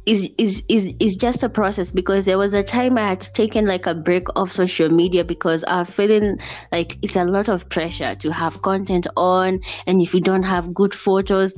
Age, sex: 20-39, female